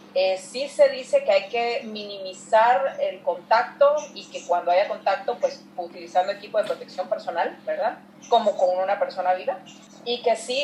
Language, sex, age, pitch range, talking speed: Spanish, female, 40-59, 190-280 Hz, 170 wpm